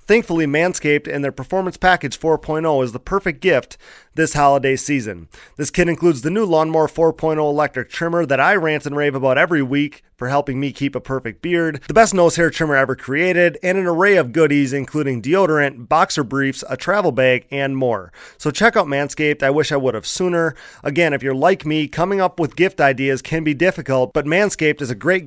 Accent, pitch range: American, 135-170 Hz